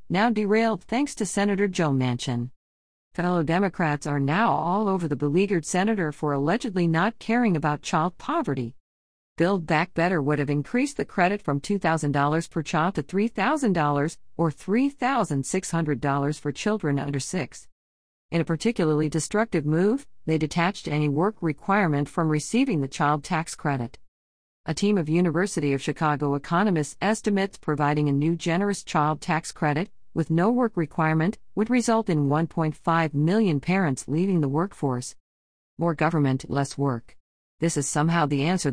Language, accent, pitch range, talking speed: English, American, 145-190 Hz, 150 wpm